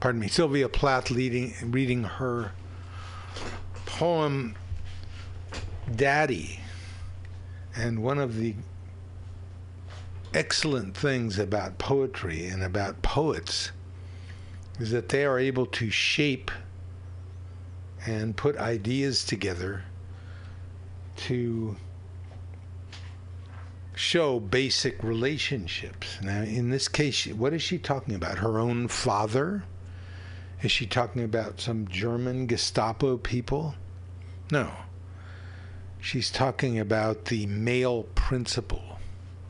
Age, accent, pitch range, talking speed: 60-79, American, 90-120 Hz, 95 wpm